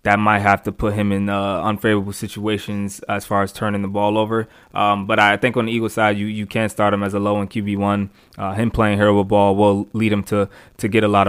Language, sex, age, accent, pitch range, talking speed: English, male, 20-39, American, 100-110 Hz, 260 wpm